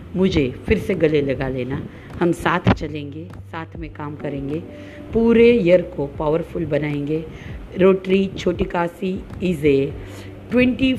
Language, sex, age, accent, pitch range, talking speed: Hindi, female, 50-69, native, 130-190 Hz, 130 wpm